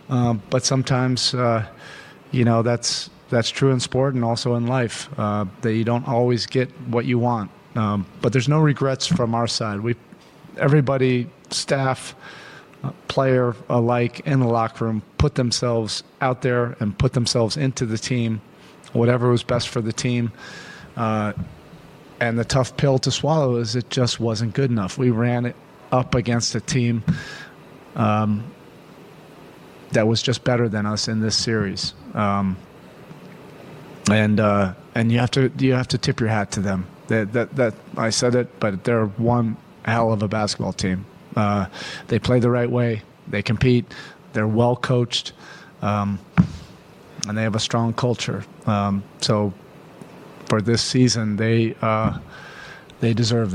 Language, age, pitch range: English, 40-59, 110-125 Hz